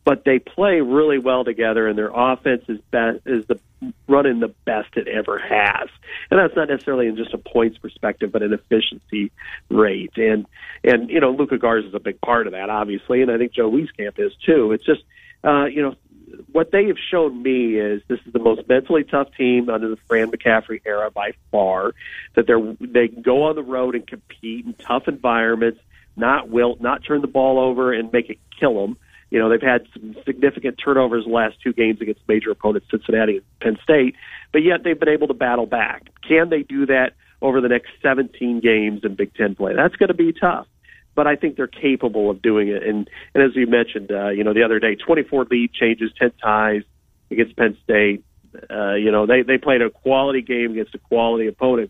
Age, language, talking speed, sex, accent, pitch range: 50-69, English, 215 wpm, male, American, 110-130 Hz